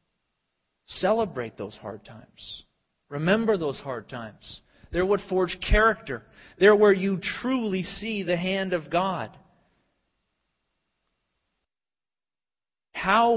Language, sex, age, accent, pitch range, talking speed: English, male, 40-59, American, 130-175 Hz, 100 wpm